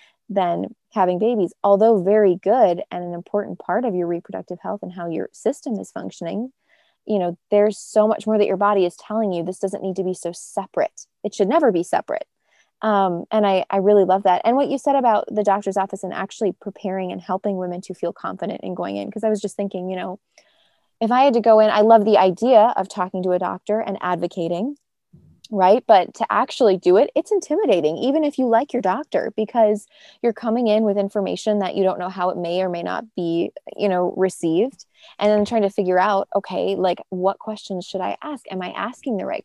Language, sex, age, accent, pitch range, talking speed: English, female, 20-39, American, 180-215 Hz, 225 wpm